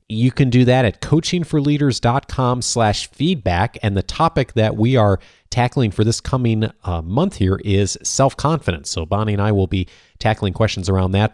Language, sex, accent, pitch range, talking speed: English, male, American, 95-125 Hz, 175 wpm